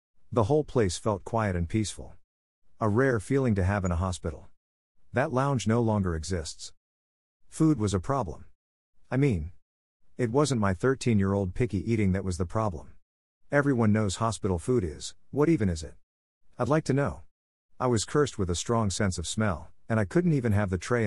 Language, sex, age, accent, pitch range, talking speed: English, male, 50-69, American, 85-120 Hz, 185 wpm